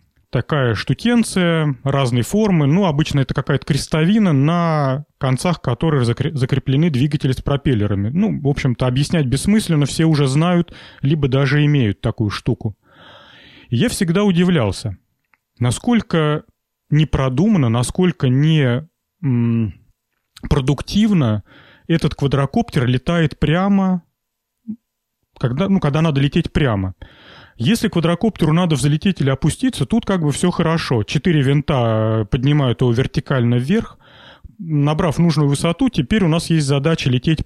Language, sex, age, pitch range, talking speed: Russian, male, 30-49, 130-165 Hz, 120 wpm